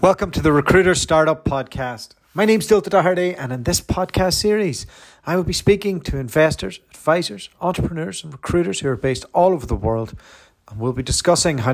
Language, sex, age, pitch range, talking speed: English, male, 40-59, 115-155 Hz, 195 wpm